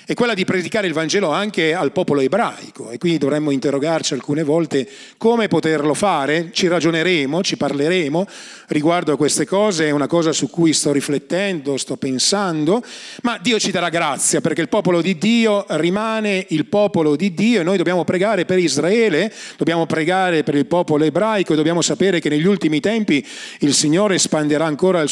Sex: male